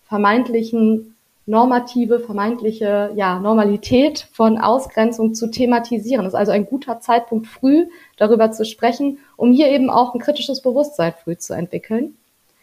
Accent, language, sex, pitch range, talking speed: German, German, female, 205-240 Hz, 140 wpm